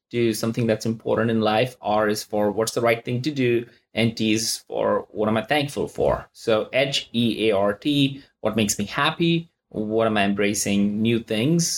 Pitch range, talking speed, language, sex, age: 110-135 Hz, 185 wpm, English, male, 20-39